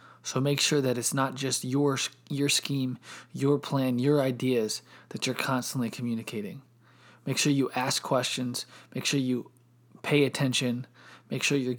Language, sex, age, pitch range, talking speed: English, male, 20-39, 120-135 Hz, 160 wpm